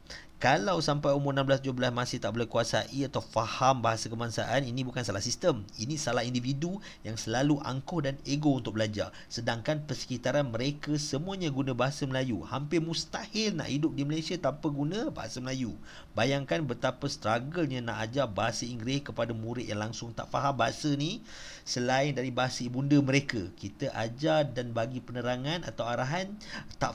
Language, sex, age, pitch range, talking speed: Malay, male, 40-59, 115-145 Hz, 160 wpm